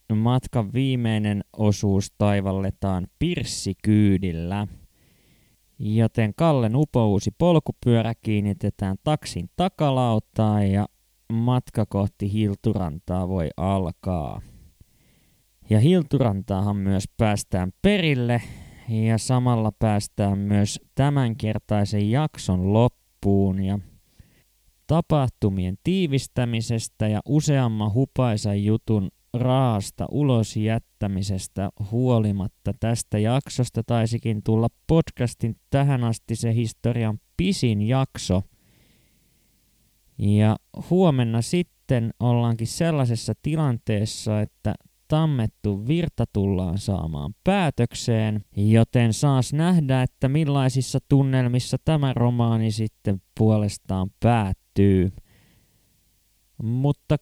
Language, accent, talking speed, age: Finnish, native, 80 wpm, 20-39